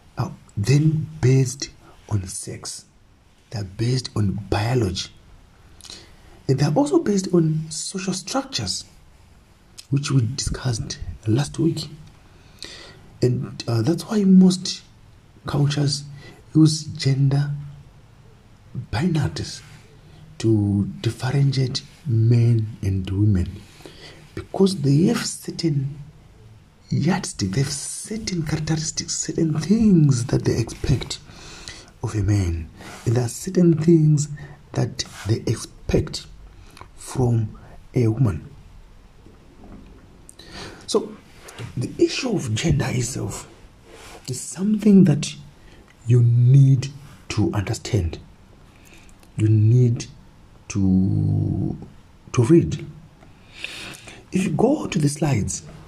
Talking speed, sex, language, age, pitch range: 90 wpm, male, English, 50-69, 105-155 Hz